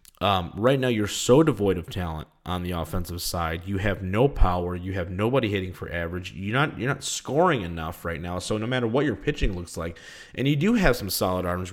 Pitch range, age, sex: 95-120 Hz, 20-39, male